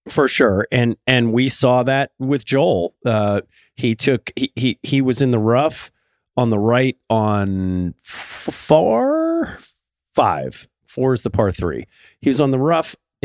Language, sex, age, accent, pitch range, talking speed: English, male, 40-59, American, 110-145 Hz, 165 wpm